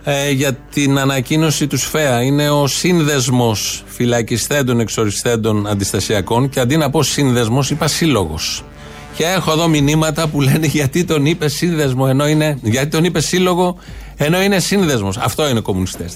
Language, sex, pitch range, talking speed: Greek, male, 130-160 Hz, 150 wpm